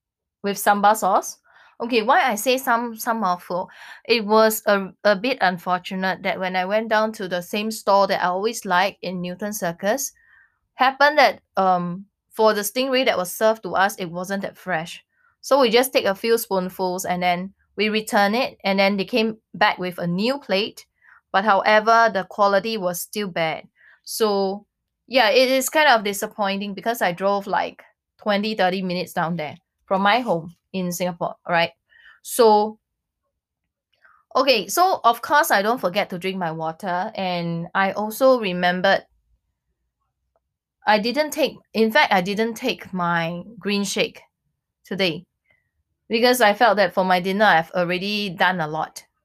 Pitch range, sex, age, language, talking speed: 185-230 Hz, female, 20-39, English, 165 wpm